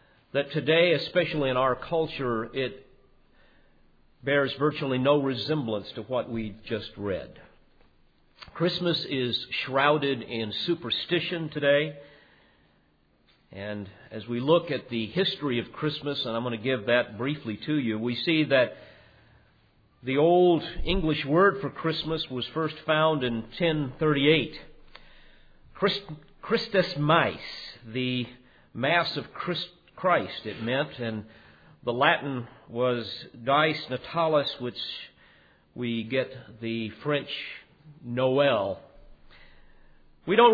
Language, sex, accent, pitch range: English, male, American, 110-150 Hz